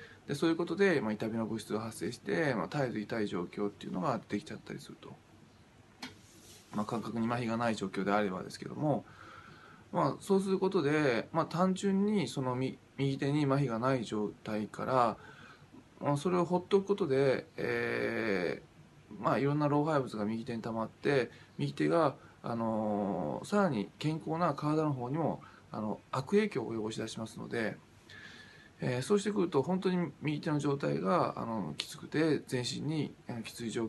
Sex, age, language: male, 20-39, Japanese